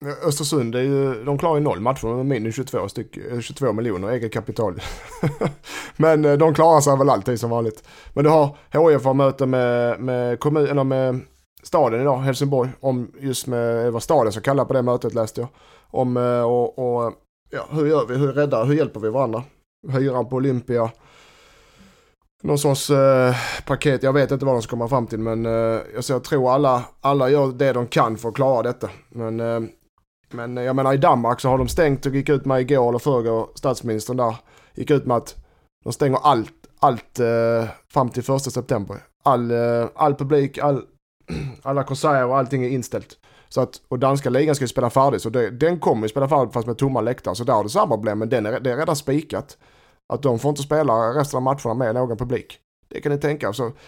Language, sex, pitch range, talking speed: Swedish, male, 120-140 Hz, 205 wpm